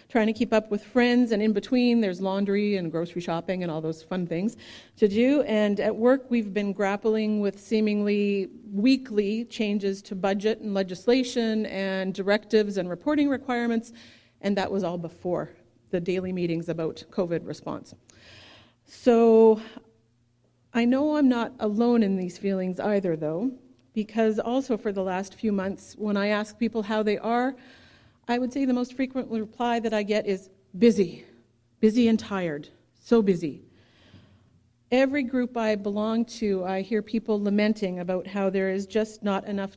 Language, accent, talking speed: English, American, 165 wpm